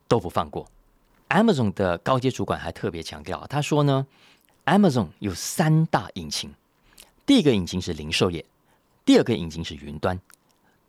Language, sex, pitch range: Chinese, male, 90-130 Hz